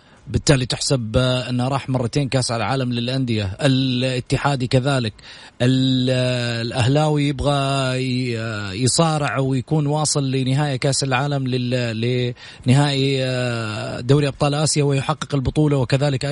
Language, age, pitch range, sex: Arabic, 30-49, 105-140 Hz, male